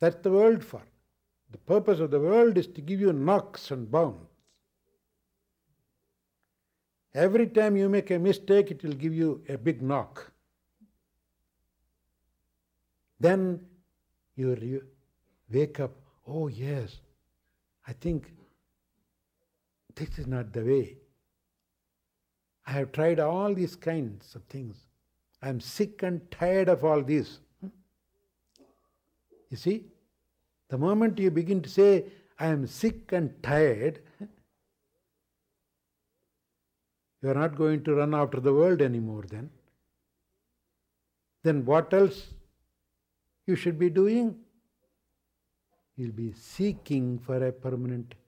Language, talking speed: English, 115 wpm